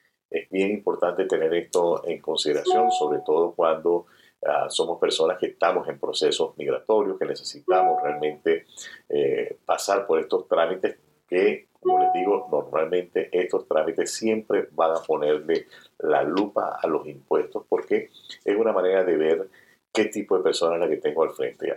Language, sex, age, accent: Spanish, male, 50-69, Venezuelan